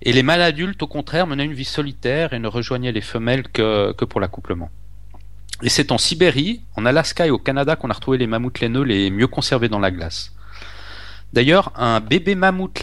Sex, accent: male, French